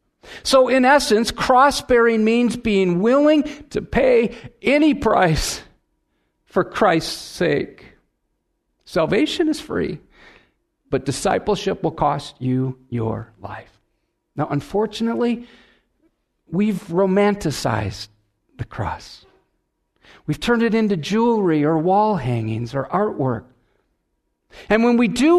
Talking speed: 105 wpm